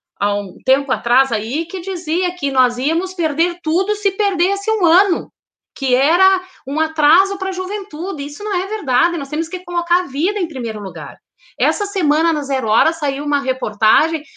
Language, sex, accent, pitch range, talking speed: Portuguese, female, Brazilian, 270-375 Hz, 185 wpm